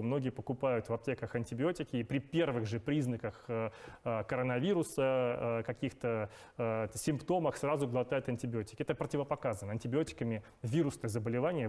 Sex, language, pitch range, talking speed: male, Russian, 120-145 Hz, 110 wpm